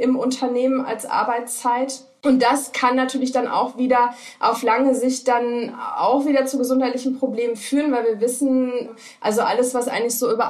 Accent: German